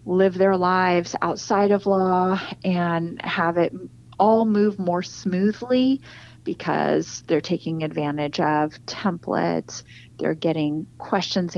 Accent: American